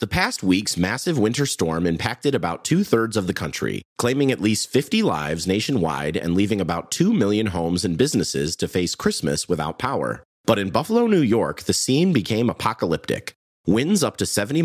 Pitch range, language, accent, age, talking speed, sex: 80-115 Hz, English, American, 30-49, 180 wpm, male